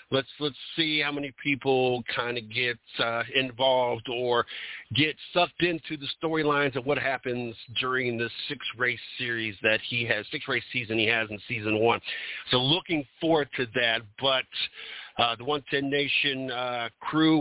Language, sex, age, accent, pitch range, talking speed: English, male, 50-69, American, 110-135 Hz, 160 wpm